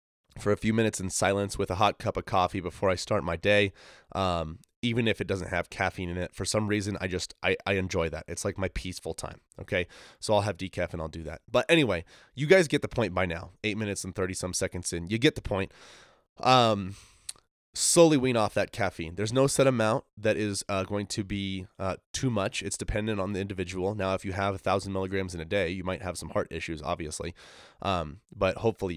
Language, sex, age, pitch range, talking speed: English, male, 20-39, 95-110 Hz, 235 wpm